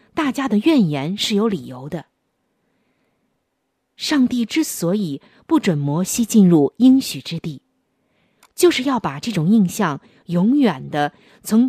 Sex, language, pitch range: female, Chinese, 165-240 Hz